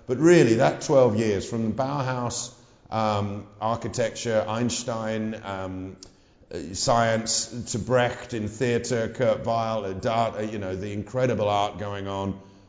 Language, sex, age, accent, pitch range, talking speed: English, male, 50-69, British, 95-110 Hz, 125 wpm